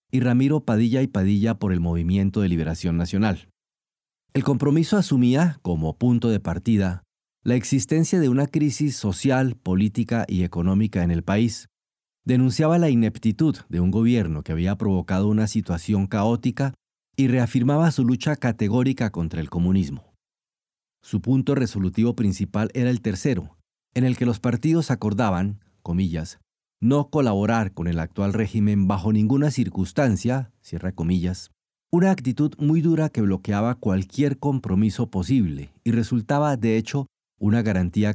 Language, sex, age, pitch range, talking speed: Spanish, male, 40-59, 95-130 Hz, 140 wpm